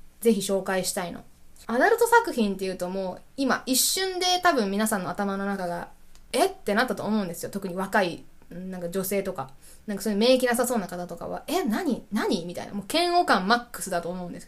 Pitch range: 195-300 Hz